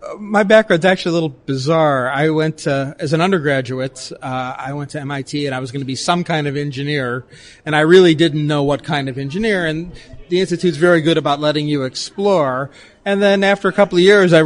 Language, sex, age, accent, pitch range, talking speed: English, male, 30-49, American, 140-170 Hz, 220 wpm